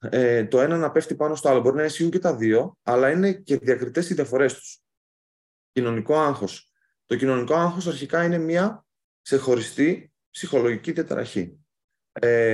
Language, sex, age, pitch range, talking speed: Greek, male, 30-49, 120-170 Hz, 160 wpm